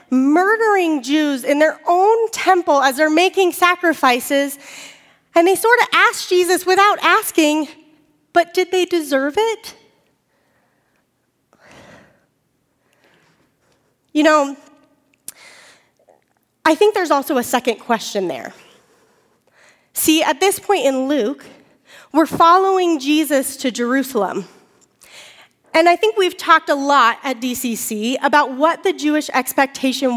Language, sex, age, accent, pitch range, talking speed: English, female, 30-49, American, 275-350 Hz, 115 wpm